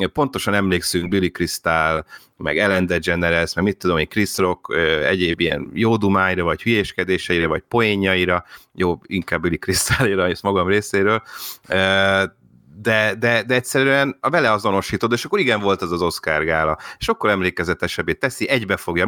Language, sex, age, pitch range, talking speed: Hungarian, male, 30-49, 85-105 Hz, 150 wpm